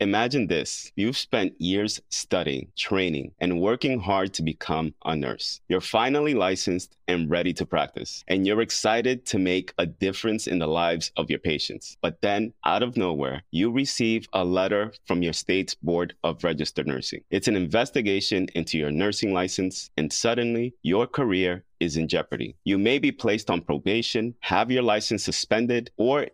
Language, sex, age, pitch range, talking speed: English, male, 30-49, 85-115 Hz, 170 wpm